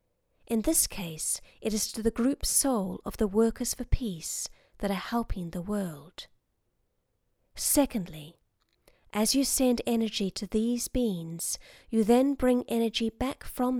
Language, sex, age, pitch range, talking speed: English, female, 30-49, 190-250 Hz, 145 wpm